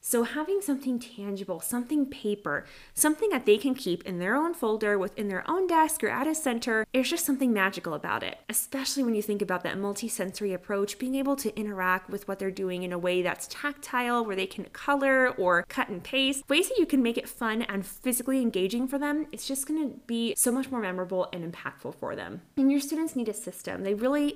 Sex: female